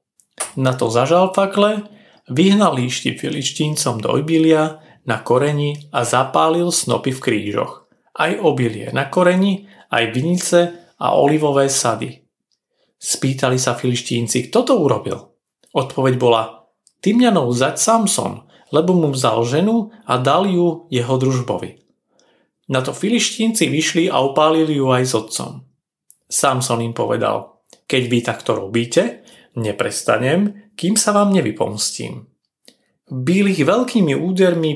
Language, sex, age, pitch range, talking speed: Slovak, male, 40-59, 130-190 Hz, 125 wpm